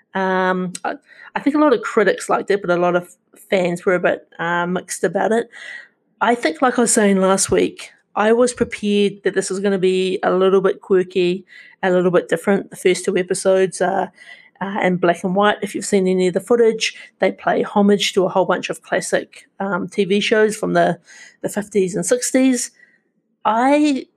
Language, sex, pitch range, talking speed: English, female, 185-230 Hz, 205 wpm